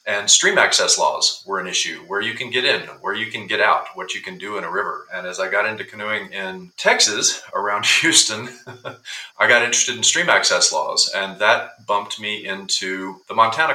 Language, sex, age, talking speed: English, male, 40-59, 210 wpm